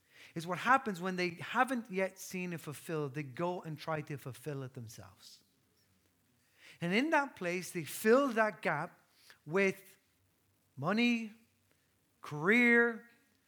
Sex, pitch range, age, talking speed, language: male, 140-205 Hz, 30-49, 130 wpm, English